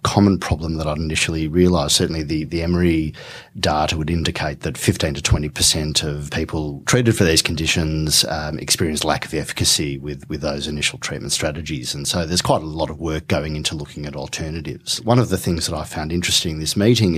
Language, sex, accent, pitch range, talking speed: English, male, Australian, 75-90 Hz, 205 wpm